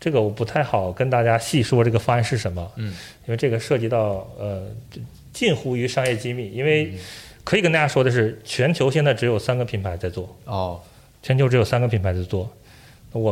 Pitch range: 105-140 Hz